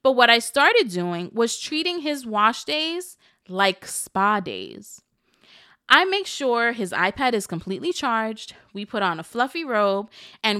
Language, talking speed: English, 160 wpm